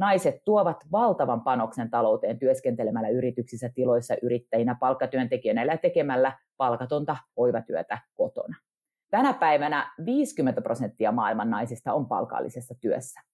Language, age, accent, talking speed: English, 30-49, Finnish, 110 wpm